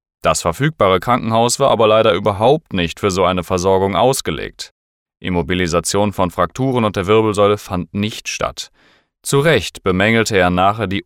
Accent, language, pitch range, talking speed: German, German, 85-120 Hz, 150 wpm